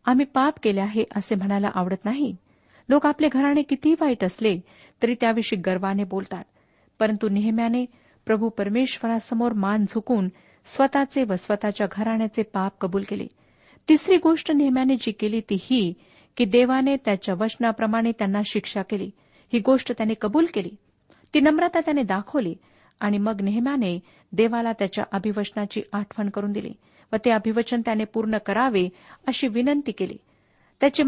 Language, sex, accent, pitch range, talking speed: Marathi, female, native, 205-250 Hz, 140 wpm